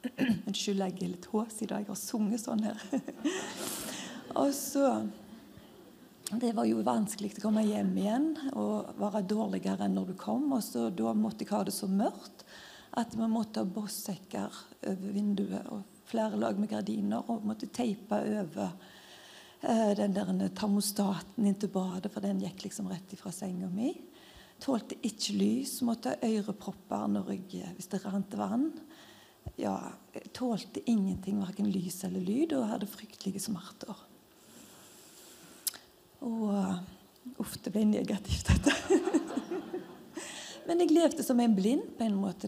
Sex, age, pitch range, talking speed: female, 40-59, 195-245 Hz, 145 wpm